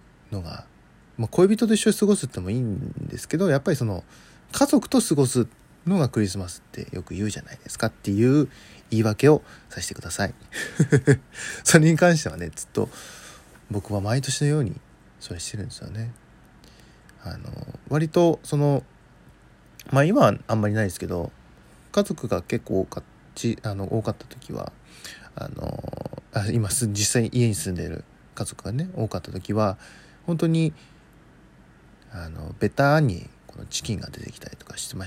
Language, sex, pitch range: Japanese, male, 100-150 Hz